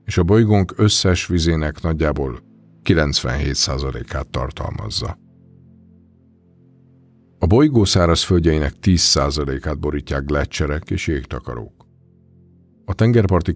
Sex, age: male, 50-69